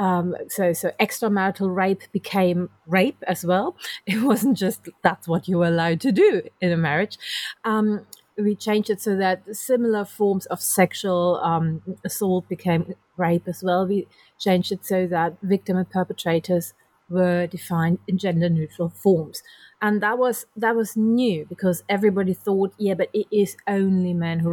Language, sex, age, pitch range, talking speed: English, female, 30-49, 180-225 Hz, 165 wpm